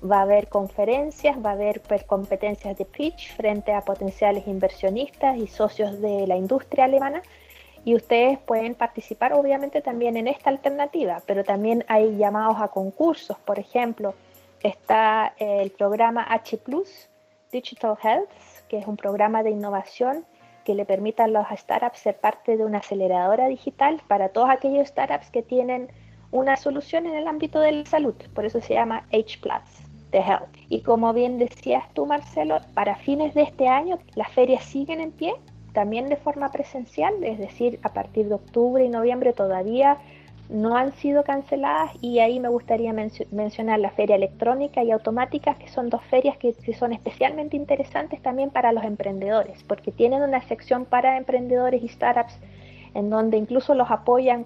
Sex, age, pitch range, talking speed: female, 30-49, 210-270 Hz, 165 wpm